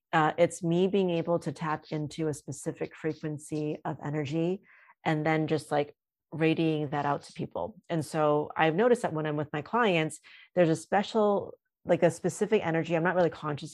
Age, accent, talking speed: 30-49, American, 190 wpm